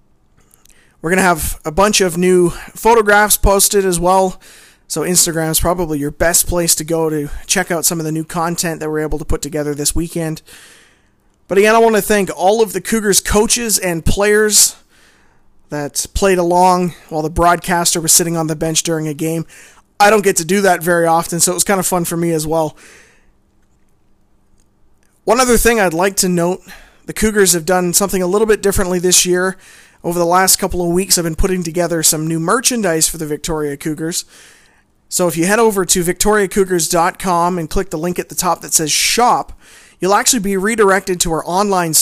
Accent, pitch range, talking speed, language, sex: American, 160-190 Hz, 200 wpm, English, male